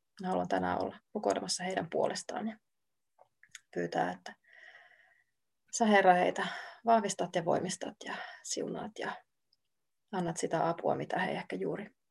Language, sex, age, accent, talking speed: Finnish, female, 30-49, native, 125 wpm